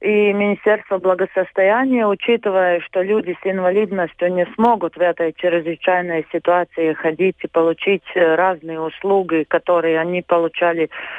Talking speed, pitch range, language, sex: 120 wpm, 165-195 Hz, Russian, female